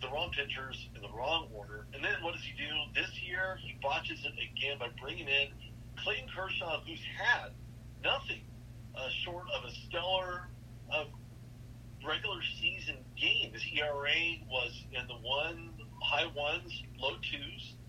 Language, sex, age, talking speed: English, male, 50-69, 155 wpm